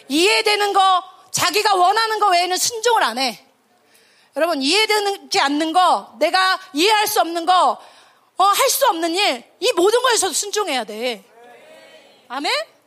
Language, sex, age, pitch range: Korean, female, 30-49, 300-415 Hz